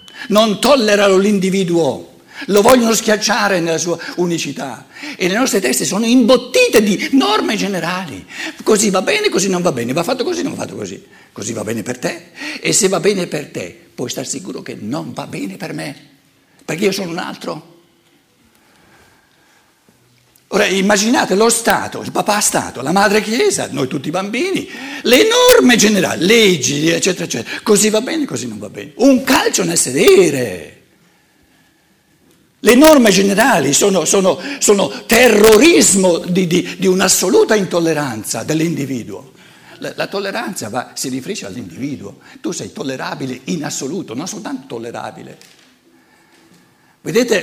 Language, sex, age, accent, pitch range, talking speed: Italian, male, 60-79, native, 170-235 Hz, 150 wpm